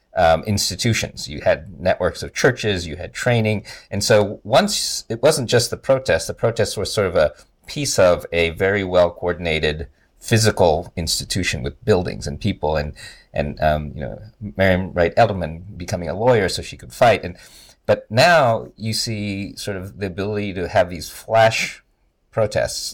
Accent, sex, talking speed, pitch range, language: American, male, 170 wpm, 85-110 Hz, English